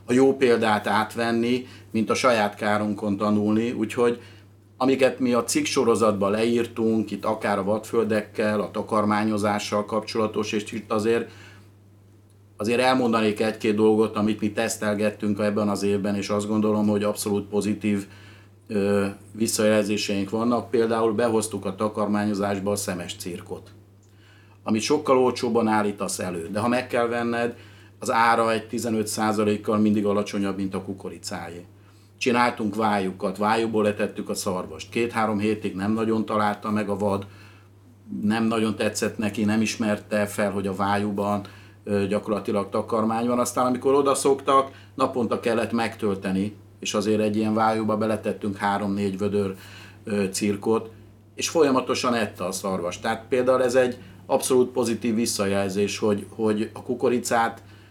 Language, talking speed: Hungarian, 135 wpm